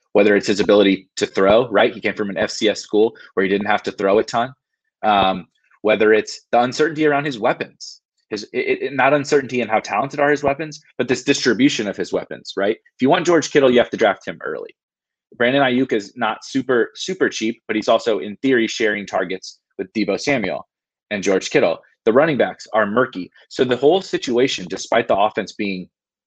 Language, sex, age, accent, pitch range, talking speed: English, male, 30-49, American, 100-145 Hz, 210 wpm